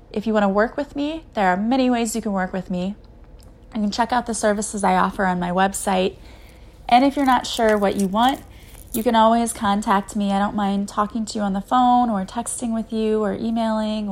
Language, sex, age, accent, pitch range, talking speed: English, female, 20-39, American, 190-225 Hz, 235 wpm